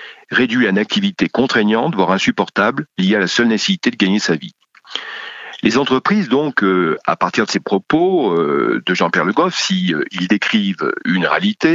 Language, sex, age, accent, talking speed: French, male, 50-69, French, 190 wpm